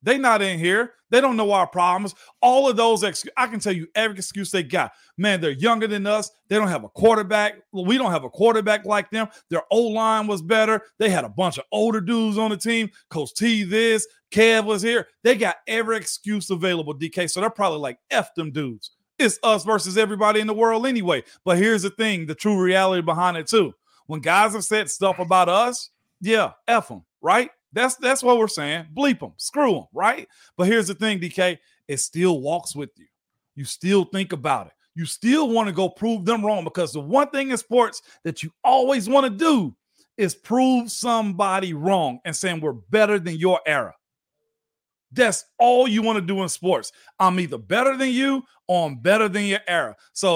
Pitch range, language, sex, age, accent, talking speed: 180-230 Hz, English, male, 40-59, American, 210 wpm